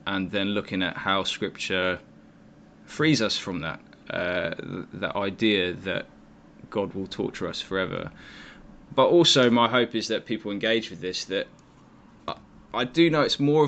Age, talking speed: 10-29, 160 wpm